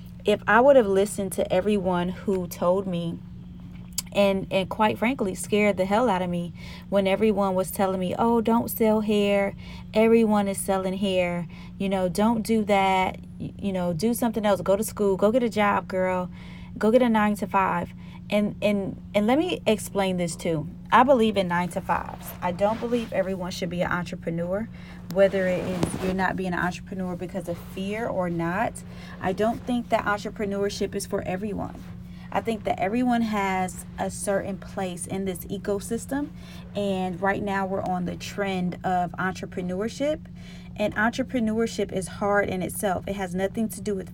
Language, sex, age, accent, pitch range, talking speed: English, female, 30-49, American, 185-210 Hz, 175 wpm